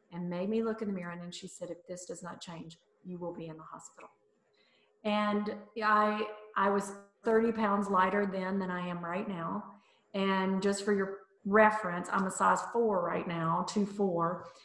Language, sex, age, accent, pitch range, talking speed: English, female, 40-59, American, 180-215 Hz, 195 wpm